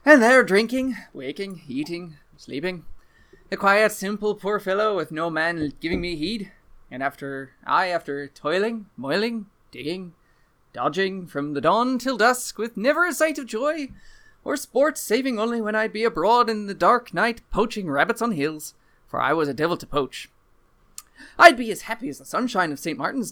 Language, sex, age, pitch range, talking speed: English, male, 20-39, 155-240 Hz, 180 wpm